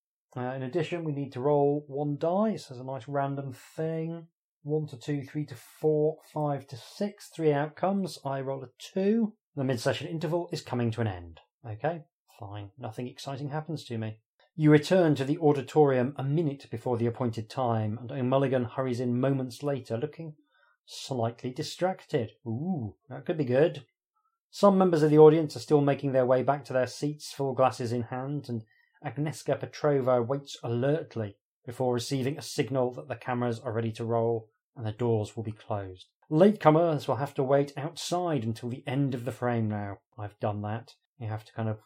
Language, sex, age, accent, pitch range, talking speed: English, male, 40-59, British, 120-155 Hz, 190 wpm